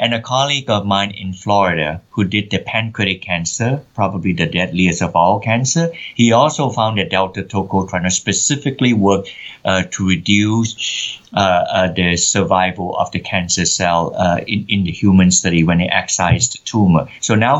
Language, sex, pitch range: English, male, 95-115 Hz